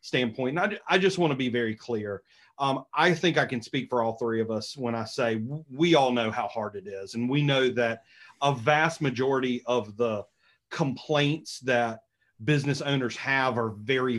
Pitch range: 115-150 Hz